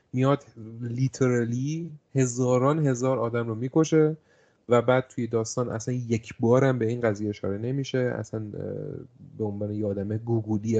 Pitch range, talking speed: 105-135 Hz, 140 wpm